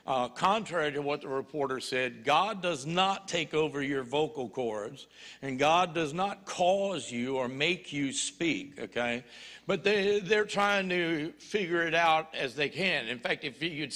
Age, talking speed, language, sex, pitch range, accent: 60-79, 175 wpm, English, male, 145-185 Hz, American